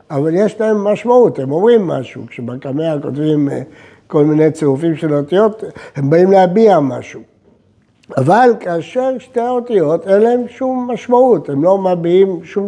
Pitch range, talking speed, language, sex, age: 125-190 Hz, 145 wpm, Hebrew, male, 60-79